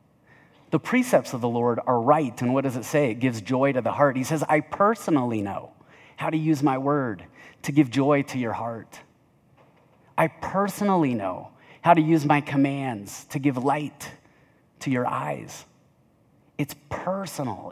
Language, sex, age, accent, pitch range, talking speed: English, male, 30-49, American, 130-165 Hz, 170 wpm